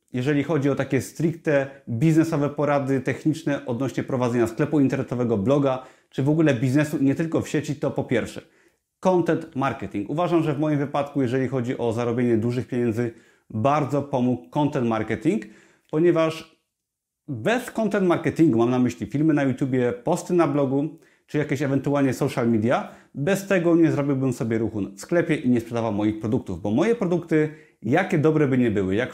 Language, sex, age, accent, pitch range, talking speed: Polish, male, 30-49, native, 125-160 Hz, 165 wpm